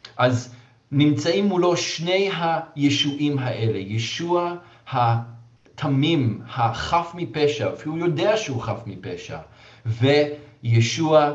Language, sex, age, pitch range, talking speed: Hebrew, male, 40-59, 115-140 Hz, 85 wpm